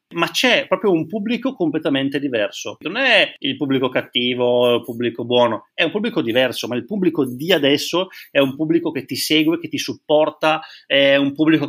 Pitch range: 125-155 Hz